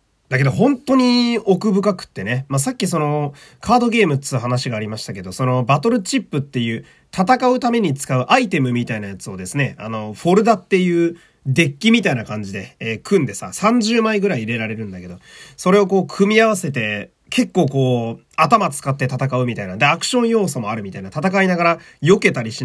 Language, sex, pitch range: Japanese, male, 125-205 Hz